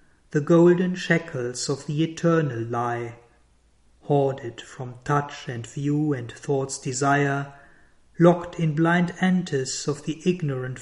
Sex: male